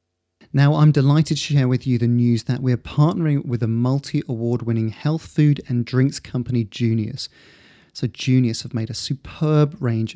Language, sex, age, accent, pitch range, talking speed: English, male, 30-49, British, 120-145 Hz, 165 wpm